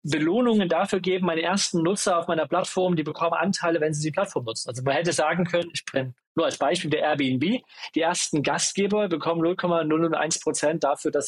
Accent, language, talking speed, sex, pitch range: German, German, 190 wpm, male, 150-195 Hz